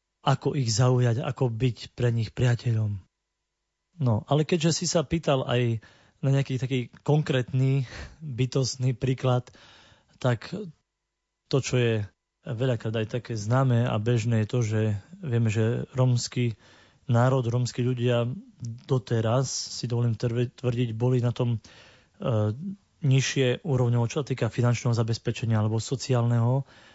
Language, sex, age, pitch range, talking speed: Slovak, male, 30-49, 120-135 Hz, 120 wpm